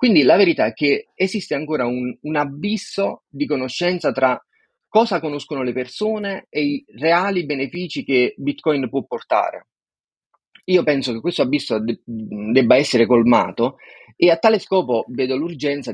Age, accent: 30-49, native